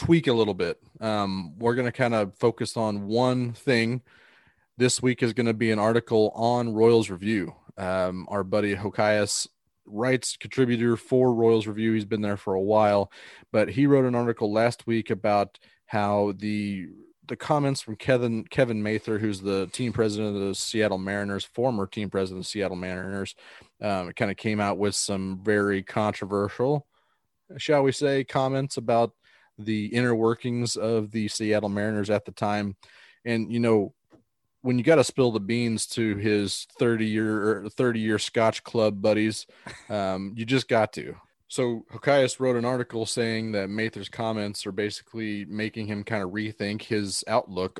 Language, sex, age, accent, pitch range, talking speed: English, male, 30-49, American, 100-115 Hz, 170 wpm